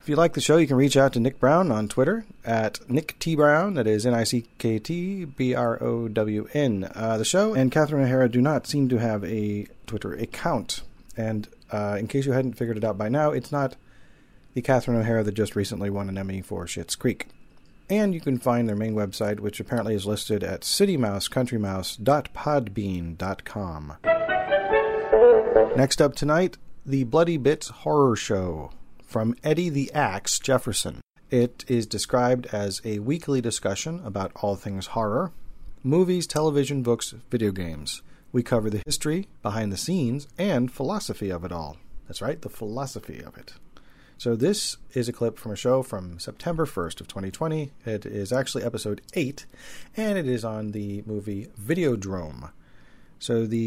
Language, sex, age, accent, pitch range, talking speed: English, male, 40-59, American, 105-145 Hz, 160 wpm